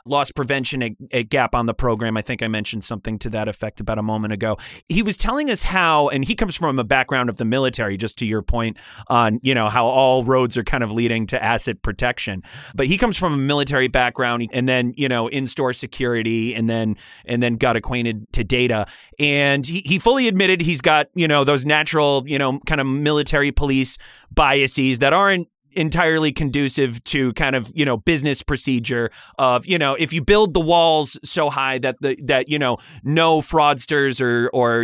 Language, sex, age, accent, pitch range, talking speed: English, male, 30-49, American, 120-150 Hz, 205 wpm